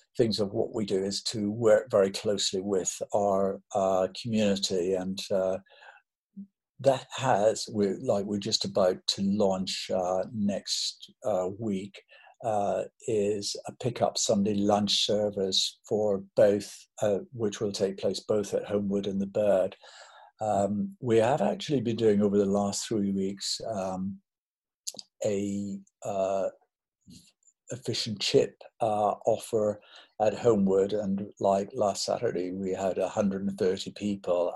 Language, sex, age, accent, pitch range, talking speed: English, male, 60-79, British, 100-105 Hz, 135 wpm